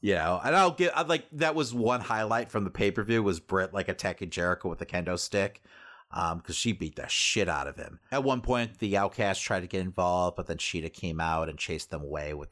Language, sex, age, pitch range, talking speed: English, male, 40-59, 80-100 Hz, 260 wpm